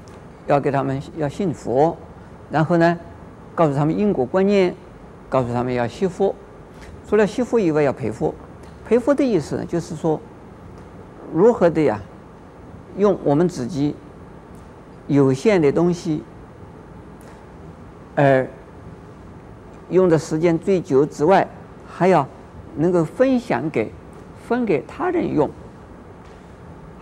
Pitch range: 120-180 Hz